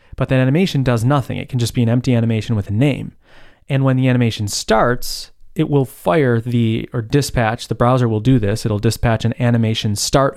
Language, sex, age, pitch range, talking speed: English, male, 20-39, 110-130 Hz, 210 wpm